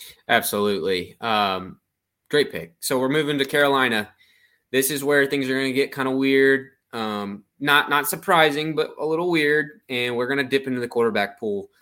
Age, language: 20-39, English